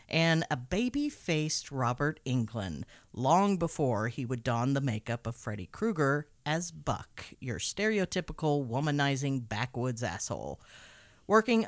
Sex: female